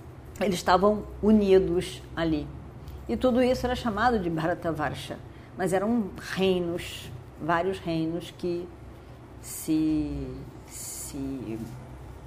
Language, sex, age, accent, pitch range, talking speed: Portuguese, female, 40-59, Brazilian, 125-200 Hz, 100 wpm